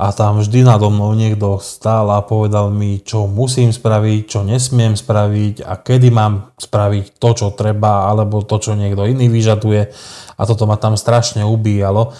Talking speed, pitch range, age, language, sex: 170 wpm, 100-115 Hz, 20-39, Slovak, male